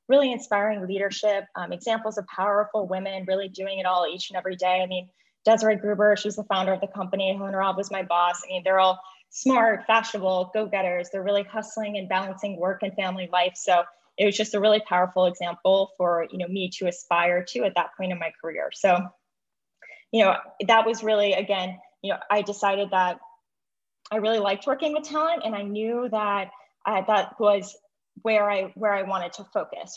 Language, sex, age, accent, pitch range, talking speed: English, female, 10-29, American, 185-215 Hz, 200 wpm